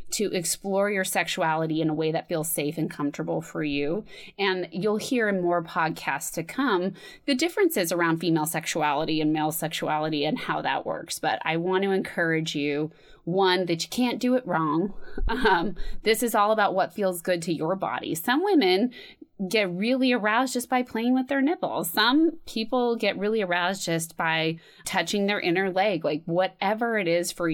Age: 20-39